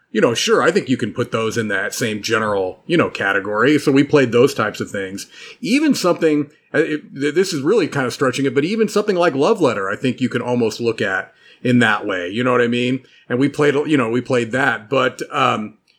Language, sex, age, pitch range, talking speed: English, male, 30-49, 115-145 Hz, 240 wpm